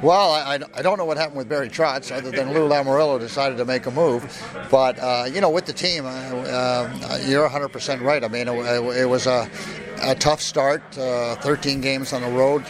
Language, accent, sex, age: English, American, male, 50-69